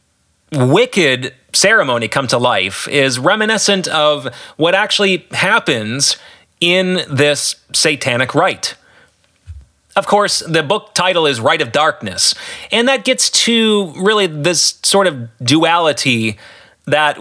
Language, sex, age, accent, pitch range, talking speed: English, male, 30-49, American, 130-180 Hz, 120 wpm